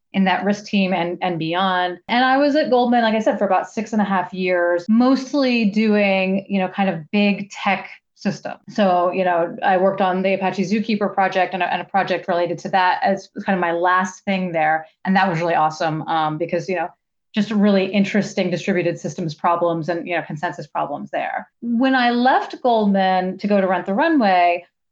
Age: 30-49